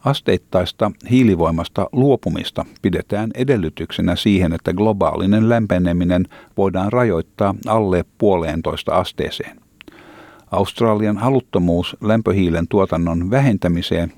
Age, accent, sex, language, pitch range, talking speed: 50-69, native, male, Finnish, 85-110 Hz, 80 wpm